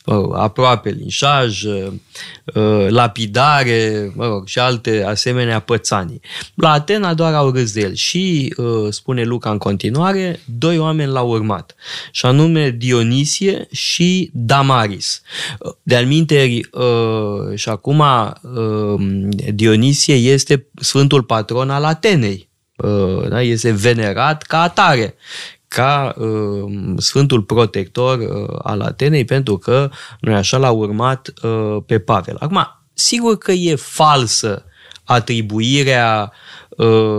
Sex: male